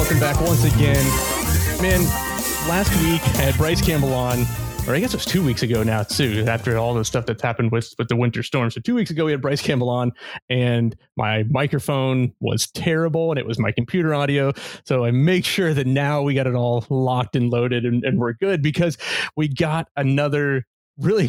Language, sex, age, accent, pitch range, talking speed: English, male, 30-49, American, 125-160 Hz, 210 wpm